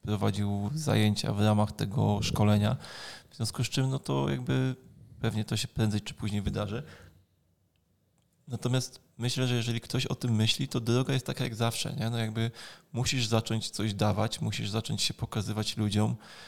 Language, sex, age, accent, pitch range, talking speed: Polish, male, 20-39, native, 105-130 Hz, 160 wpm